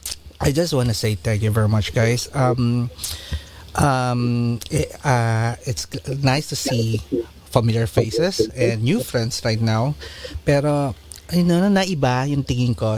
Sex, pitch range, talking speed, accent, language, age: male, 115-145 Hz, 150 wpm, Filipino, English, 30-49